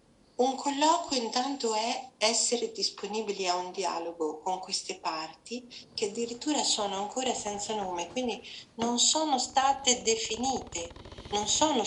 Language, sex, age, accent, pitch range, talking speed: Italian, female, 50-69, native, 195-260 Hz, 125 wpm